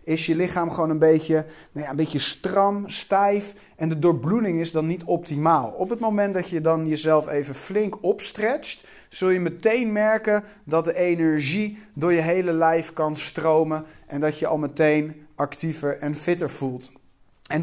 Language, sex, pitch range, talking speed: Dutch, male, 150-180 Hz, 170 wpm